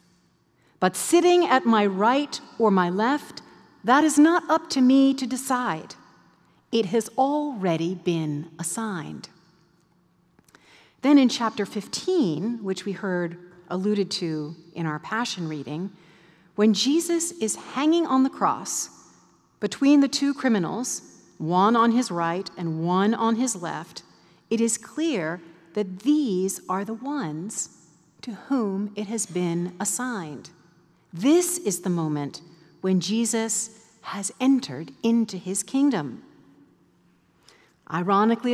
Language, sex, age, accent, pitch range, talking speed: English, female, 40-59, American, 180-265 Hz, 125 wpm